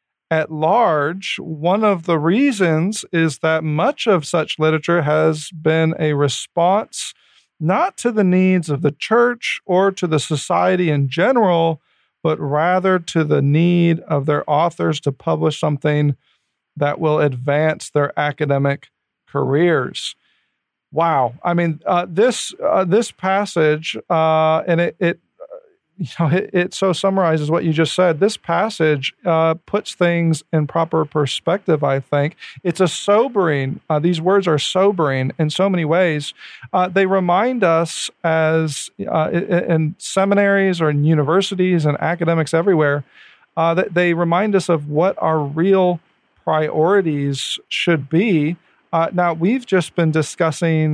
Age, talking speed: 40-59, 145 wpm